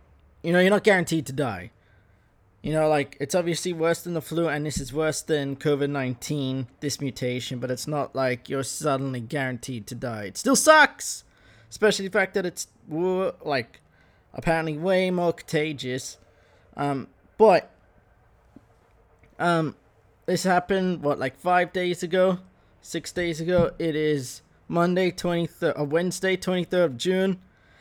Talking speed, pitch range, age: 145 wpm, 125-175 Hz, 20-39